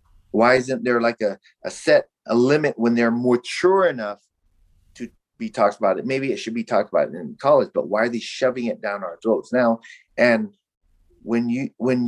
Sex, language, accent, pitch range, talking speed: male, English, American, 105-135 Hz, 200 wpm